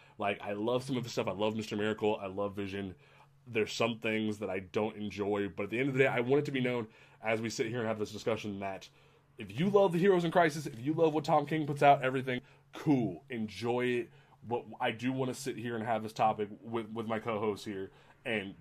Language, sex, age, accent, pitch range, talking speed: English, male, 20-39, American, 110-140 Hz, 260 wpm